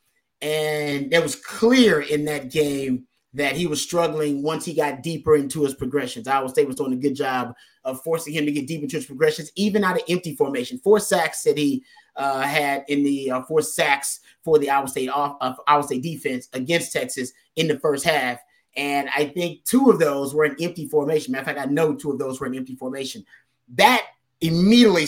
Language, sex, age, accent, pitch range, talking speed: English, male, 30-49, American, 140-180 Hz, 215 wpm